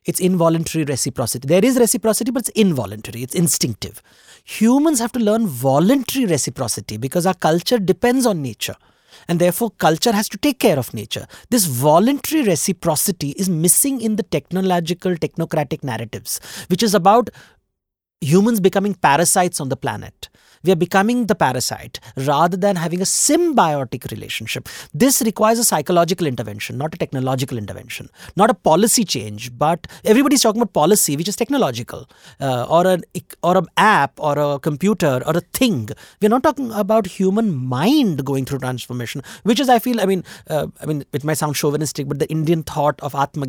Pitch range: 135-210 Hz